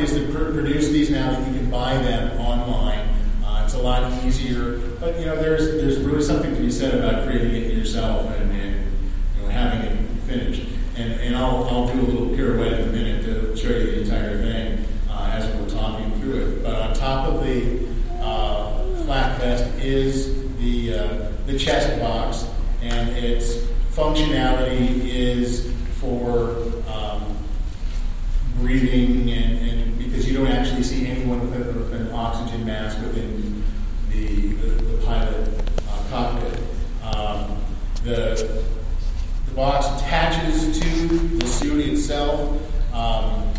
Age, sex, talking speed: 40-59, male, 145 wpm